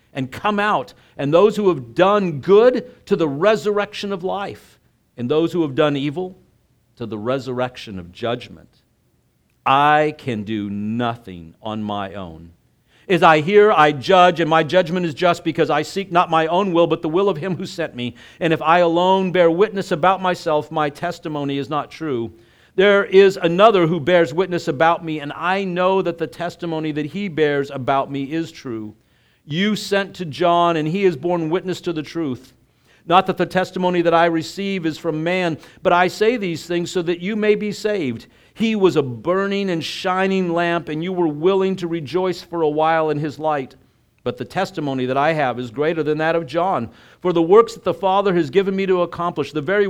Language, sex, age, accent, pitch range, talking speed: English, male, 50-69, American, 140-185 Hz, 200 wpm